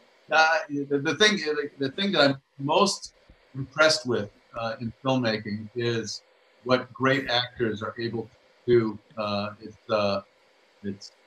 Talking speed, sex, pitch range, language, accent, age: 140 wpm, male, 115-155 Hz, English, American, 50-69